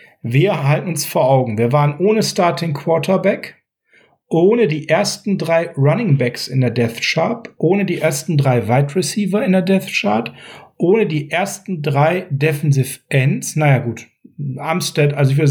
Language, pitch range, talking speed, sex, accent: German, 140-185 Hz, 165 wpm, male, German